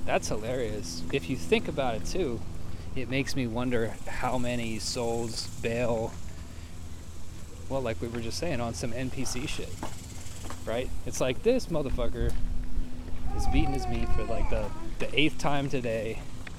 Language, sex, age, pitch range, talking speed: English, male, 20-39, 85-125 Hz, 150 wpm